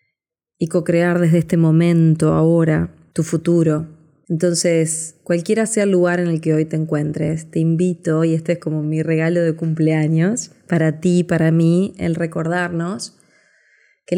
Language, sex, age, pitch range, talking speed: Spanish, female, 20-39, 165-190 Hz, 150 wpm